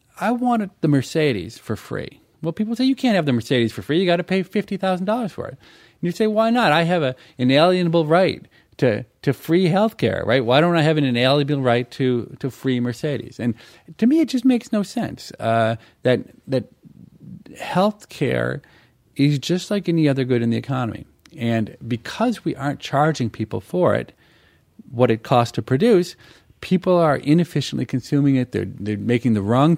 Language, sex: English, male